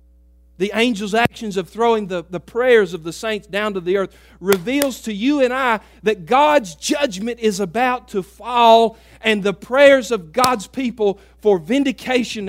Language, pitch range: English, 190-245 Hz